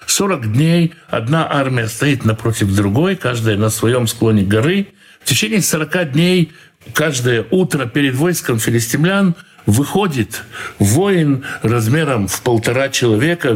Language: Russian